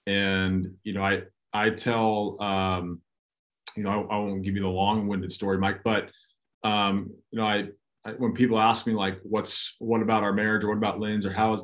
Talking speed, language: 215 wpm, English